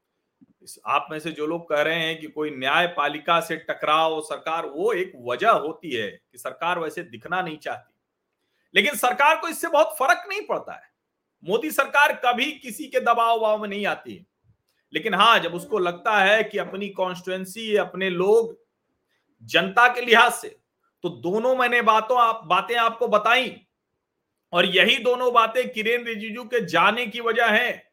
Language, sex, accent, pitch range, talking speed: Hindi, male, native, 185-270 Hz, 170 wpm